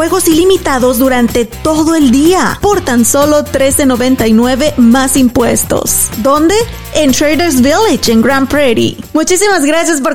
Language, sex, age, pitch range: Spanish, female, 30-49, 225-280 Hz